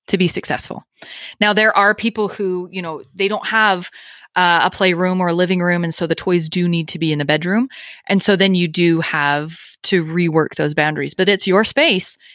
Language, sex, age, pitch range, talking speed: English, female, 20-39, 170-215 Hz, 220 wpm